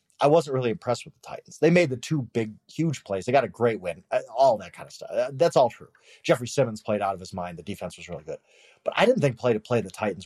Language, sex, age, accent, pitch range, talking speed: English, male, 30-49, American, 105-150 Hz, 270 wpm